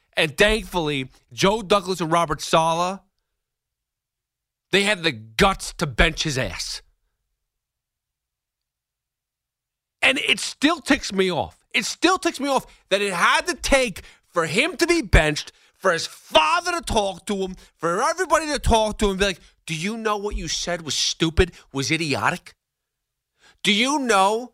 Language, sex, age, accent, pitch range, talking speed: English, male, 30-49, American, 165-255 Hz, 160 wpm